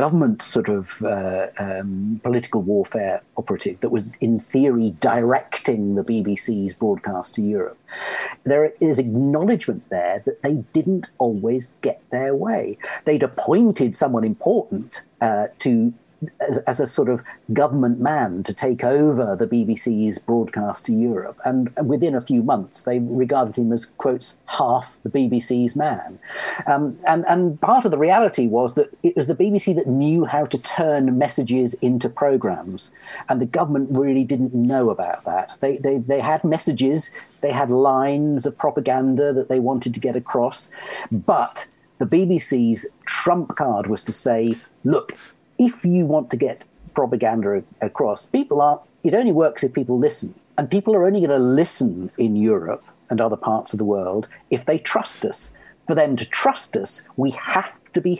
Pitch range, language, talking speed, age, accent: 115-150 Hz, English, 165 wpm, 50-69, British